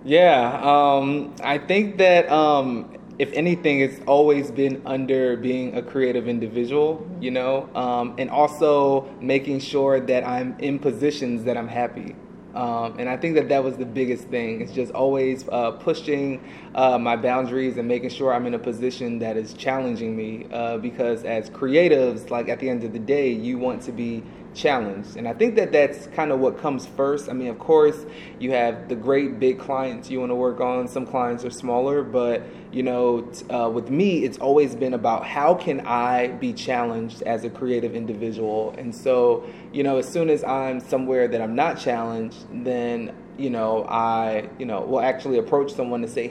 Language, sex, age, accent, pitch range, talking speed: English, male, 20-39, American, 120-140 Hz, 190 wpm